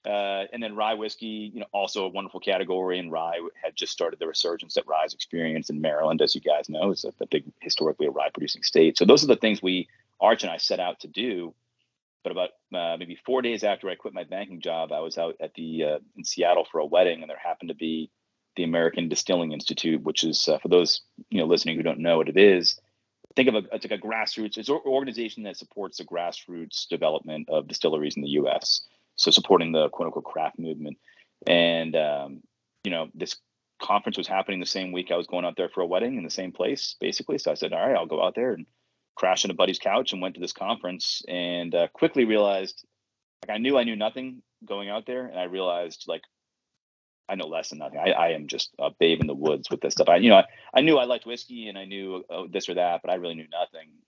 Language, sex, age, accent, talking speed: English, male, 30-49, American, 245 wpm